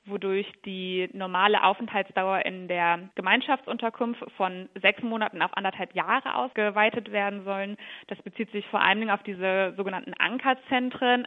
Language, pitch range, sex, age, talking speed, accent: German, 195-240 Hz, female, 20-39, 140 wpm, German